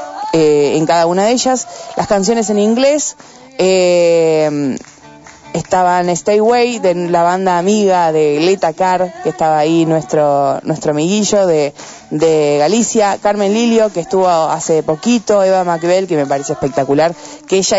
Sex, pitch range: female, 165-210 Hz